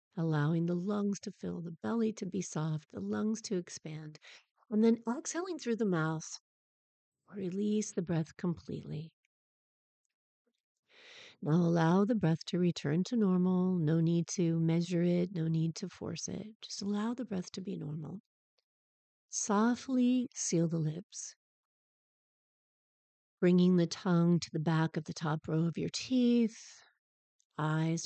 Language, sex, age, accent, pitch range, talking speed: English, female, 50-69, American, 170-220 Hz, 145 wpm